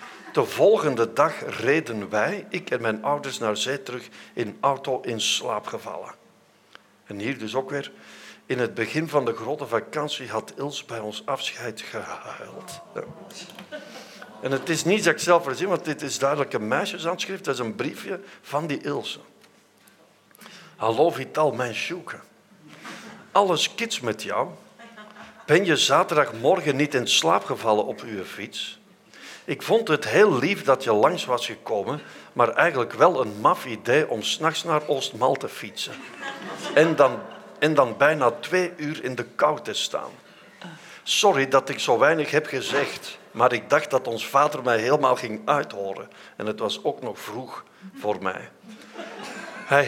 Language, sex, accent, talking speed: Dutch, male, Dutch, 160 wpm